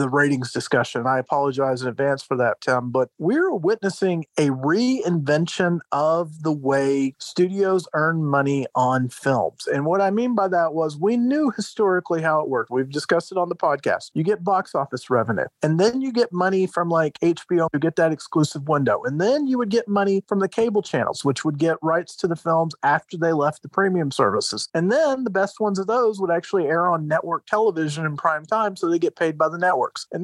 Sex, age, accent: male, 40-59, American